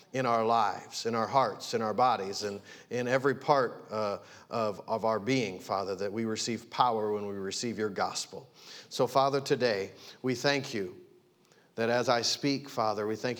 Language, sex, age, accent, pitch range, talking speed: English, male, 50-69, American, 115-135 Hz, 185 wpm